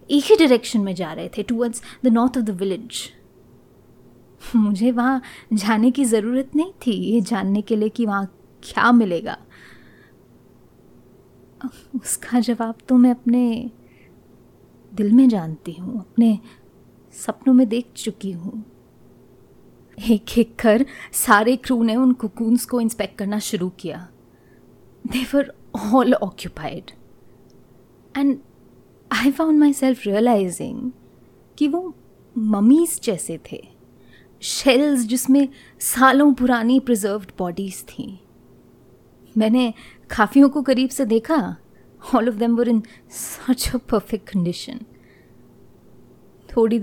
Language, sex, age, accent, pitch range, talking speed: Hindi, female, 20-39, native, 190-250 Hz, 120 wpm